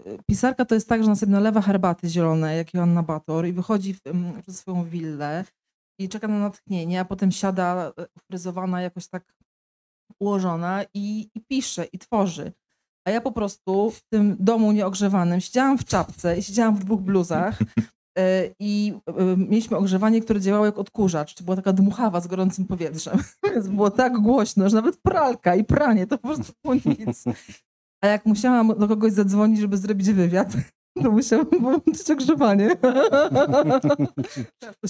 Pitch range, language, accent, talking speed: 185-220 Hz, Polish, native, 155 wpm